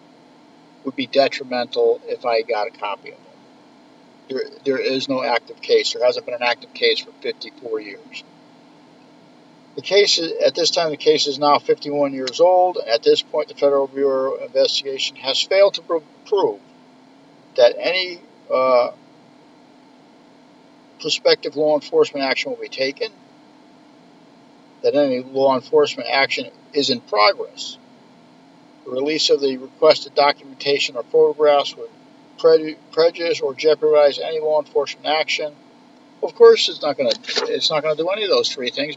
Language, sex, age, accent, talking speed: English, male, 50-69, American, 155 wpm